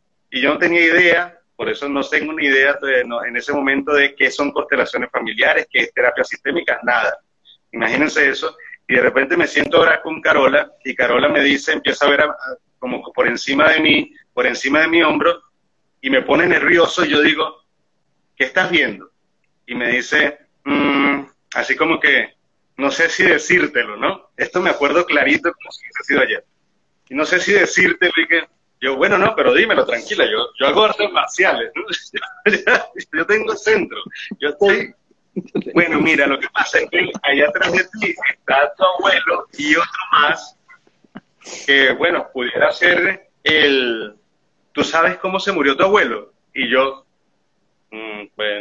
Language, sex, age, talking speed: Spanish, male, 30-49, 175 wpm